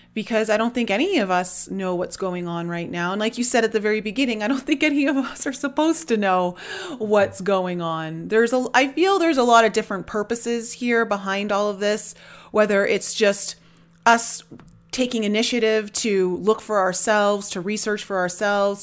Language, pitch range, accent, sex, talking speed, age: English, 190-245 Hz, American, female, 200 wpm, 30-49